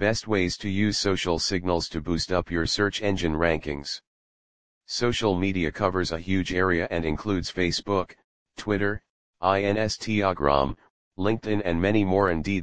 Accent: American